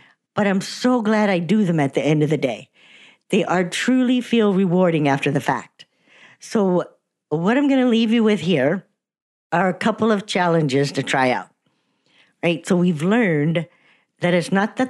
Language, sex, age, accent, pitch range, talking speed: English, female, 50-69, American, 160-225 Hz, 185 wpm